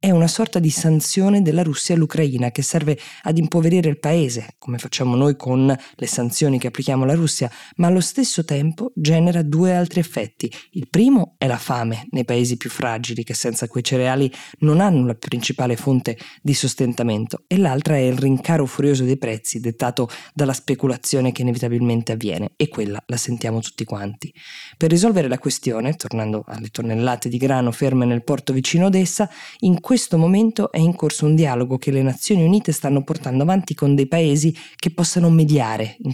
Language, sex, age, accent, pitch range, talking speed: Italian, female, 20-39, native, 125-160 Hz, 185 wpm